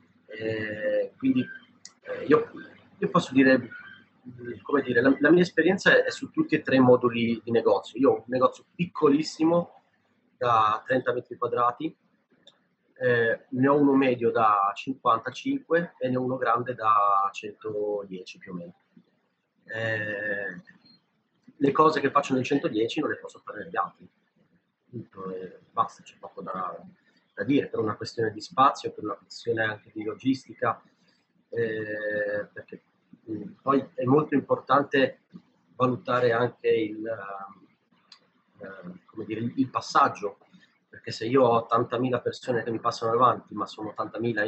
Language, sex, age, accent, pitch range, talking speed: Italian, male, 30-49, native, 110-145 Hz, 145 wpm